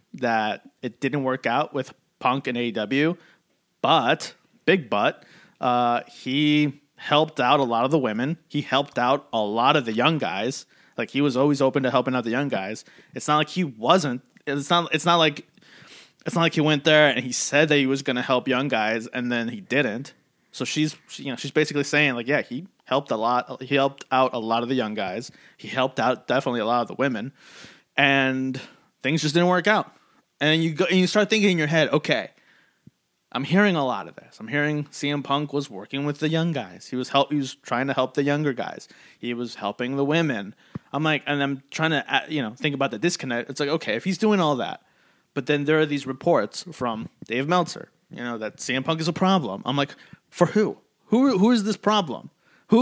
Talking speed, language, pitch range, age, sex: 225 wpm, English, 130-160 Hz, 30-49, male